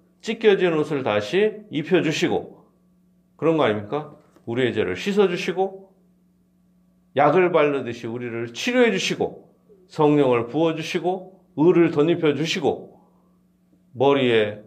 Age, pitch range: 40-59, 135-185 Hz